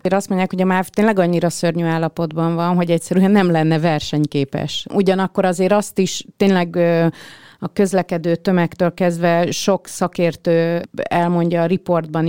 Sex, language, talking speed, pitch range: female, Hungarian, 140 wpm, 165-195 Hz